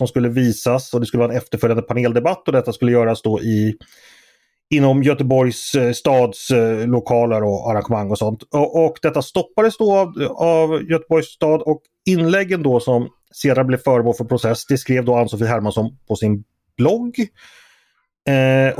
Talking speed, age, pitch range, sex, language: 165 wpm, 30-49, 115-160 Hz, male, Swedish